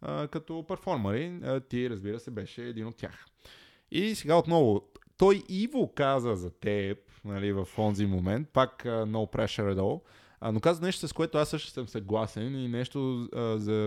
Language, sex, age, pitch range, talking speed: Bulgarian, male, 20-39, 105-130 Hz, 160 wpm